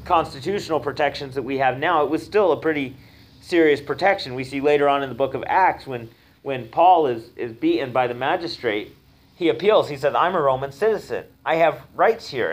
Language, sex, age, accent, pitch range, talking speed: English, male, 40-59, American, 130-165 Hz, 205 wpm